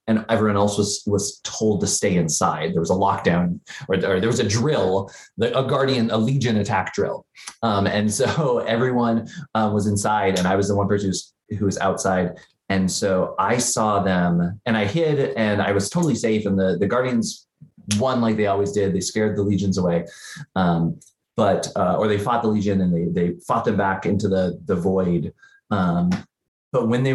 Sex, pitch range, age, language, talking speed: male, 90-110 Hz, 20-39, English, 205 wpm